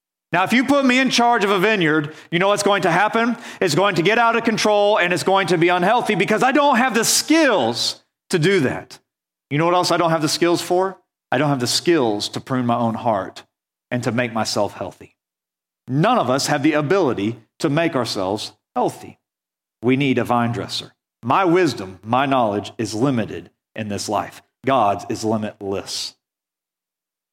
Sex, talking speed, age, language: male, 200 wpm, 40-59, English